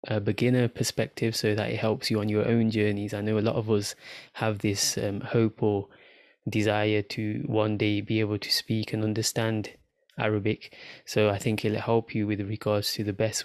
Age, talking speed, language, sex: 20-39, 200 wpm, English, male